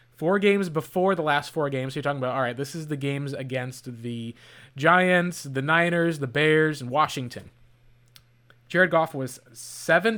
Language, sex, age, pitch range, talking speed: English, male, 20-39, 130-175 Hz, 175 wpm